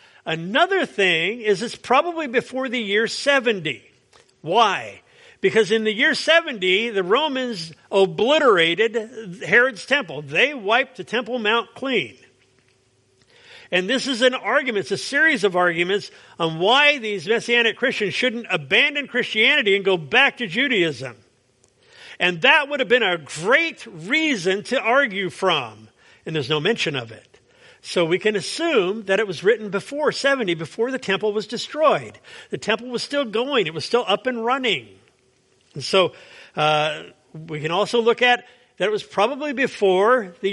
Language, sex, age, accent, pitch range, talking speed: English, male, 50-69, American, 190-270 Hz, 155 wpm